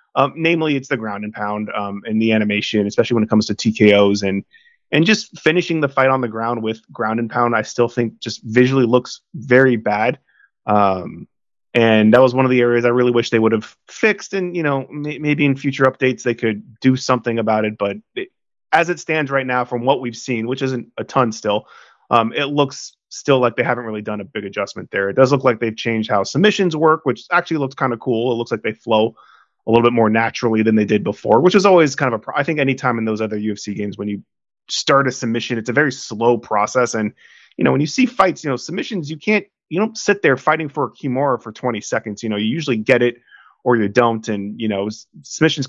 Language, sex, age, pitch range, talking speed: English, male, 30-49, 110-140 Hz, 245 wpm